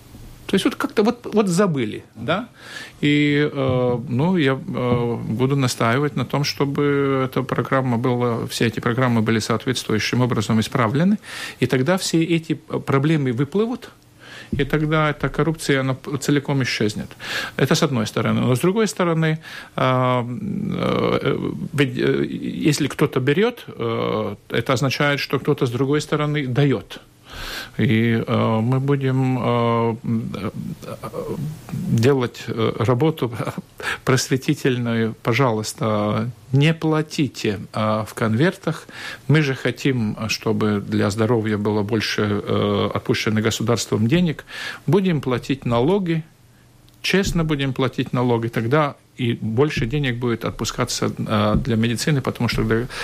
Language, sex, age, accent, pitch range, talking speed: Russian, male, 50-69, native, 115-145 Hz, 115 wpm